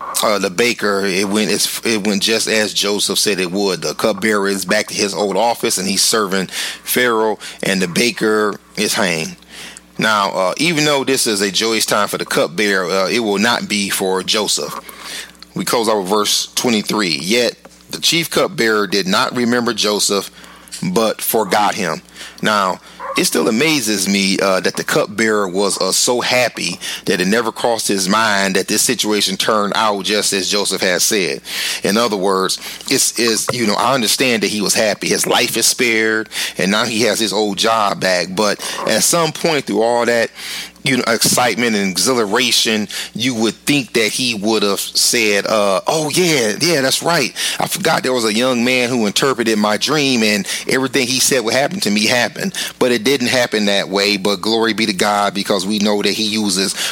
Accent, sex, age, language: American, male, 30-49, English